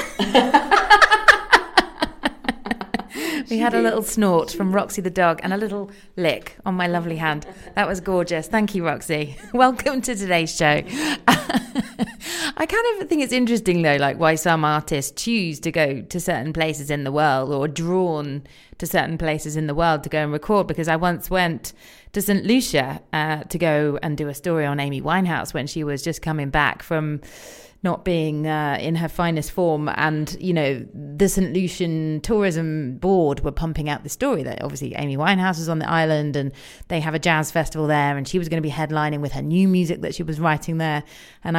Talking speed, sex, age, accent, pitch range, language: 195 wpm, female, 30-49, British, 150-190 Hz, English